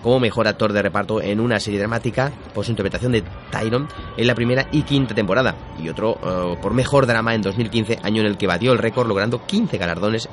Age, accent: 30-49, Spanish